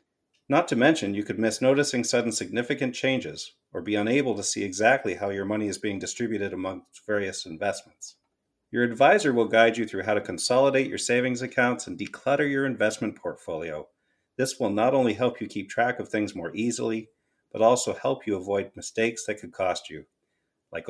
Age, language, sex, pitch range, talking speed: 40-59, English, male, 105-125 Hz, 185 wpm